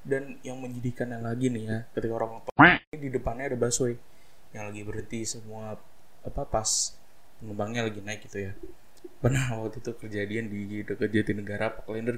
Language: Indonesian